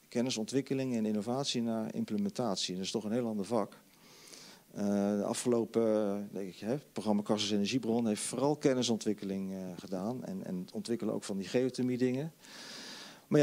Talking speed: 155 wpm